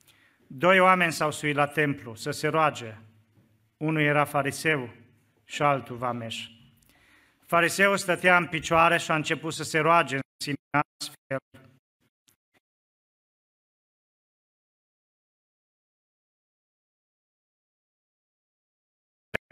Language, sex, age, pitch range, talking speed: Romanian, male, 40-59, 120-165 Hz, 85 wpm